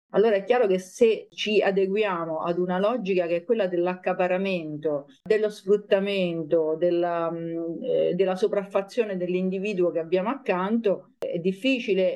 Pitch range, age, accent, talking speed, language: 175-200 Hz, 50-69, native, 130 wpm, Italian